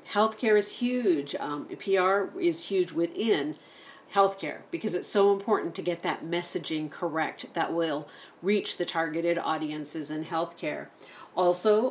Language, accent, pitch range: English, American, 170-235 Hz